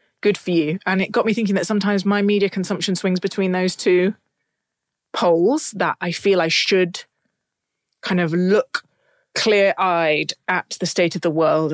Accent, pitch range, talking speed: British, 165-200 Hz, 175 wpm